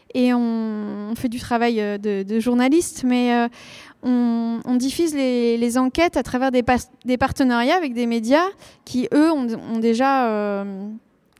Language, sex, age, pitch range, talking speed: French, female, 20-39, 235-275 Hz, 170 wpm